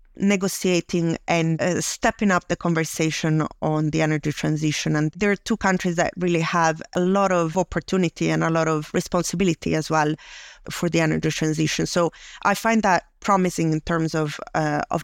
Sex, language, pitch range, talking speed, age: female, English, 160-180 Hz, 175 wpm, 30-49